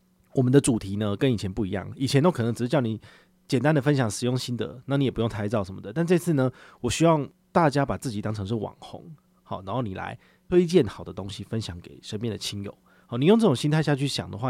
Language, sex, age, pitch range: Chinese, male, 30-49, 105-145 Hz